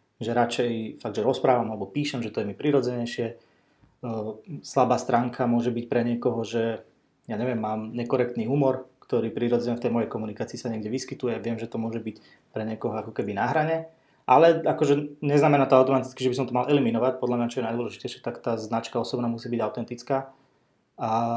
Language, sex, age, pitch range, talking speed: Slovak, male, 20-39, 115-135 Hz, 190 wpm